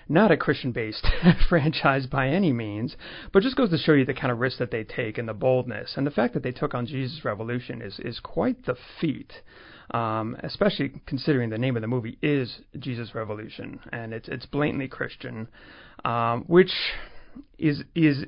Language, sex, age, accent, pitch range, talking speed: English, male, 30-49, American, 115-140 Hz, 190 wpm